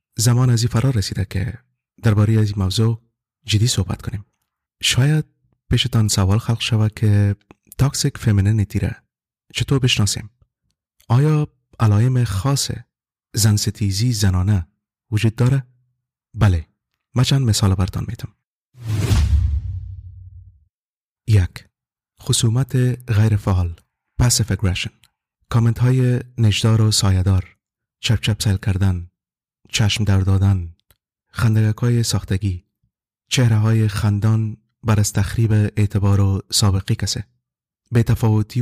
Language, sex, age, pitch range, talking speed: English, male, 30-49, 100-120 Hz, 105 wpm